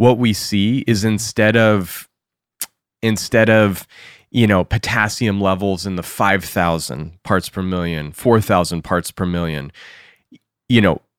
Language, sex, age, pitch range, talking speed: English, male, 30-49, 90-110 Hz, 135 wpm